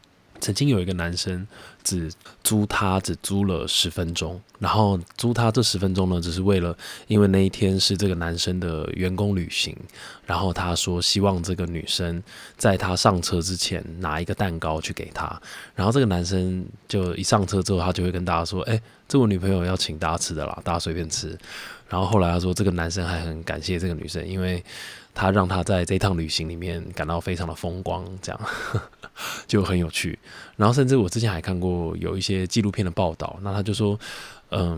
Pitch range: 85-100 Hz